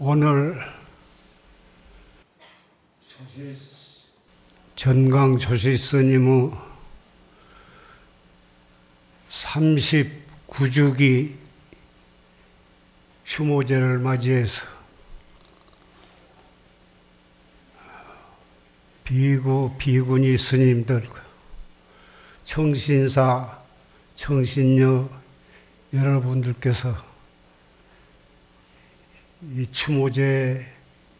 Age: 60-79